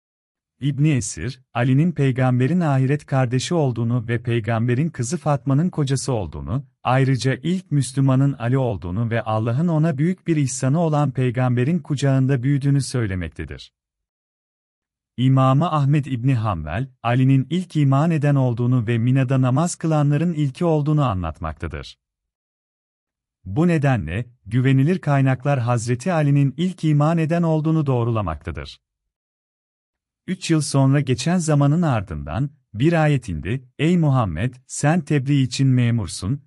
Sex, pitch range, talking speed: male, 115-145 Hz, 115 wpm